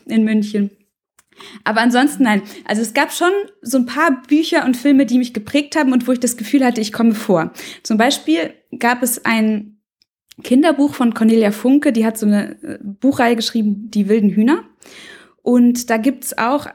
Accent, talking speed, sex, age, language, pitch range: German, 185 wpm, female, 20-39, German, 215-270 Hz